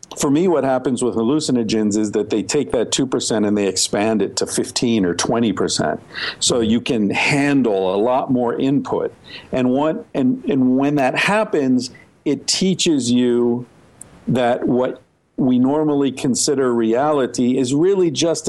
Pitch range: 110-145 Hz